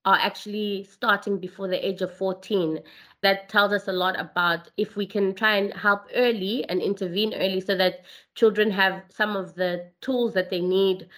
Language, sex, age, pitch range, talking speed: English, female, 20-39, 185-210 Hz, 190 wpm